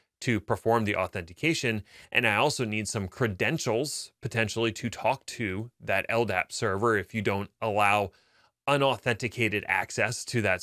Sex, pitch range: male, 100-130 Hz